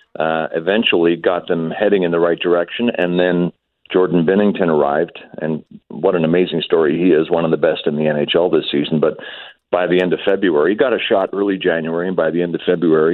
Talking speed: 220 wpm